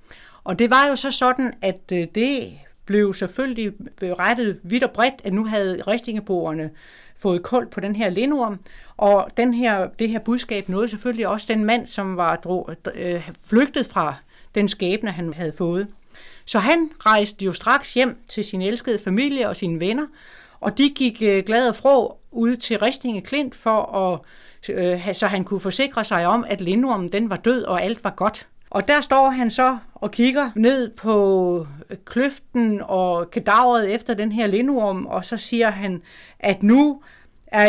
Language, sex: Danish, female